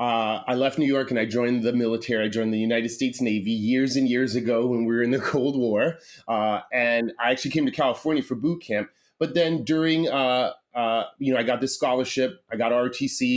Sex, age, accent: male, 30-49, American